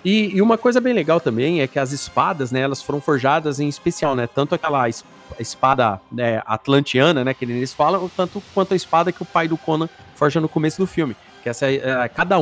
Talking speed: 205 wpm